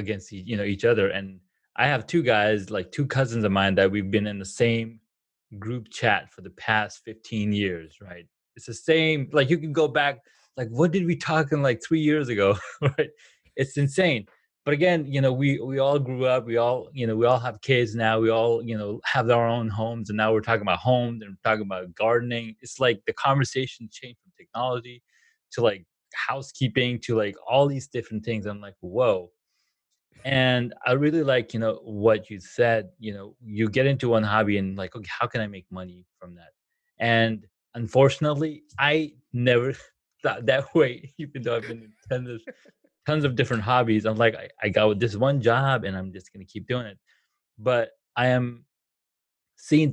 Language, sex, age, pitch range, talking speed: English, male, 20-39, 105-135 Hz, 200 wpm